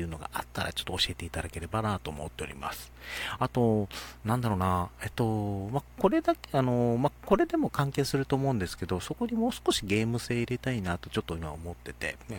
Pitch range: 85-140 Hz